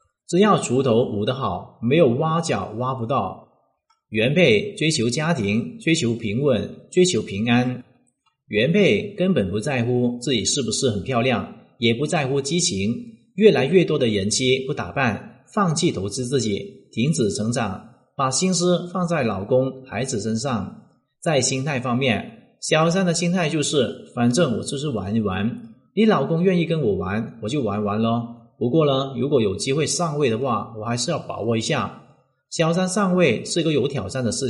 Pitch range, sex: 115-170 Hz, male